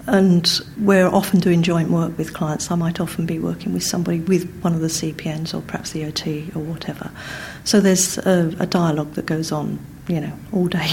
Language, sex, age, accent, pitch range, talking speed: English, female, 50-69, British, 165-190 Hz, 210 wpm